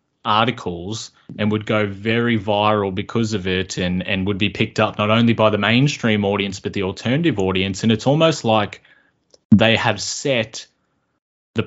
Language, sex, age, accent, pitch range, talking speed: English, male, 20-39, Australian, 100-125 Hz, 170 wpm